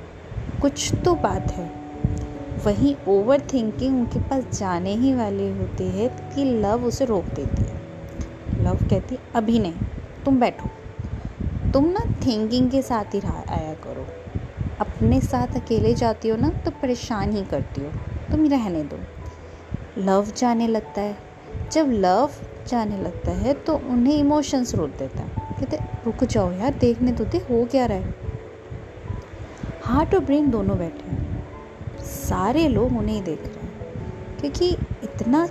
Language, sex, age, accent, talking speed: Hindi, female, 20-39, native, 145 wpm